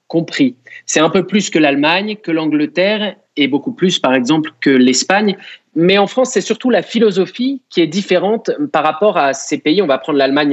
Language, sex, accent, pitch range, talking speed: French, male, French, 145-215 Hz, 200 wpm